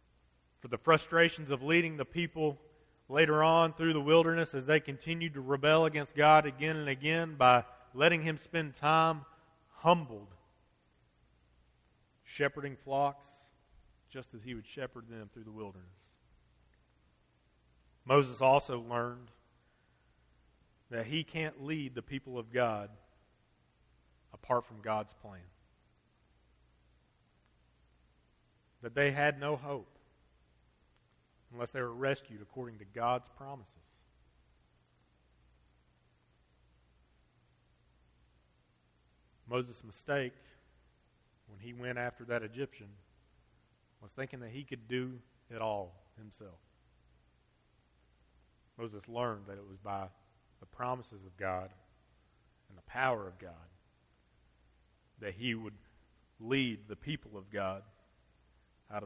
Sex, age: male, 40-59